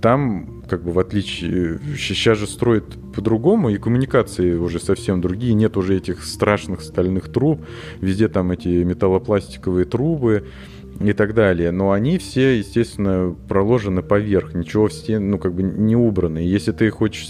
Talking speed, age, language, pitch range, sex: 155 wpm, 30-49, Russian, 95-110 Hz, male